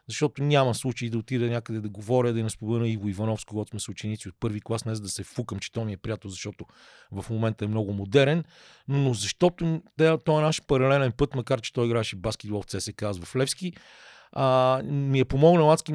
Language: Bulgarian